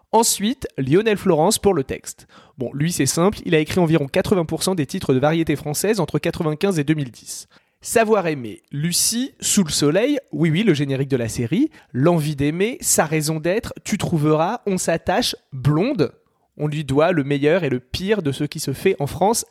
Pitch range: 145-200 Hz